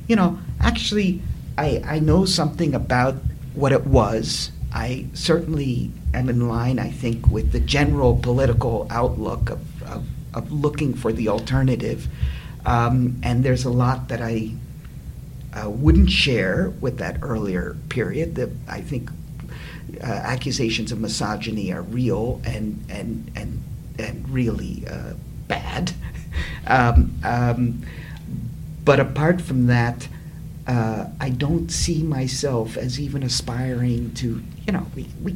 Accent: American